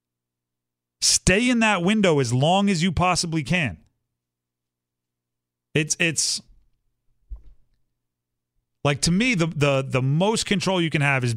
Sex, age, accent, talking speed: male, 30-49, American, 125 wpm